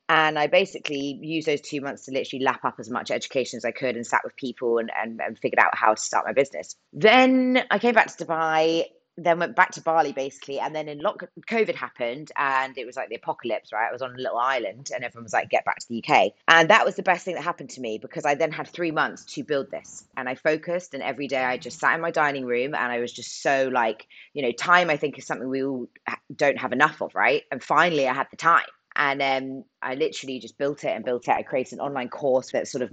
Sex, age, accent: female, 20-39, British